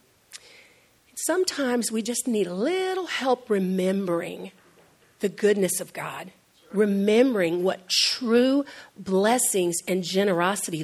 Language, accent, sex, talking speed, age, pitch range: English, American, female, 100 wpm, 50-69, 185-265 Hz